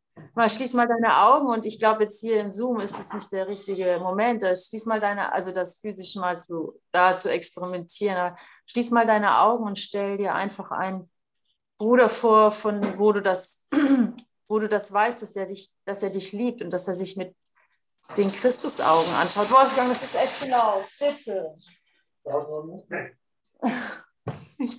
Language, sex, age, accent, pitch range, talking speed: German, female, 30-49, German, 195-265 Hz, 160 wpm